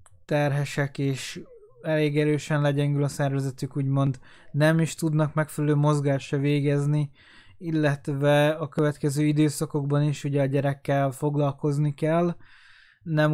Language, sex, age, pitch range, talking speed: Hungarian, male, 20-39, 130-155 Hz, 110 wpm